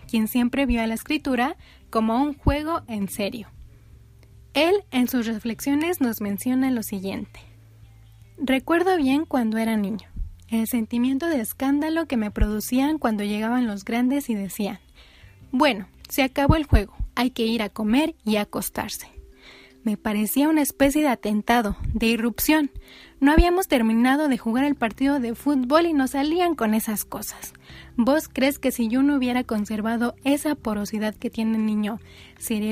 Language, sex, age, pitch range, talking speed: Spanish, female, 20-39, 215-275 Hz, 160 wpm